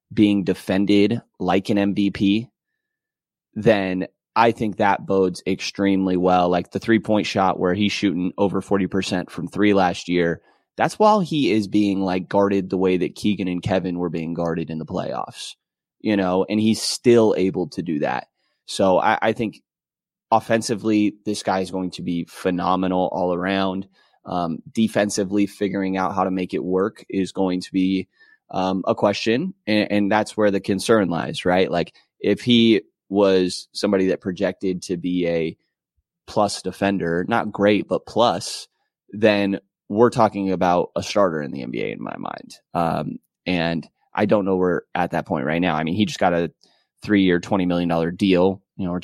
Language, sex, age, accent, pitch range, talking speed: English, male, 20-39, American, 90-105 Hz, 175 wpm